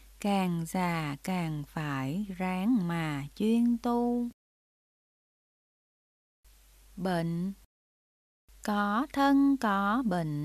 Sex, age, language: female, 20-39, Vietnamese